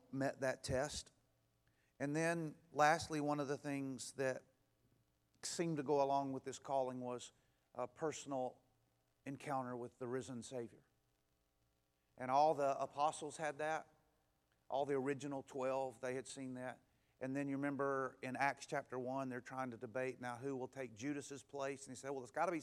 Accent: American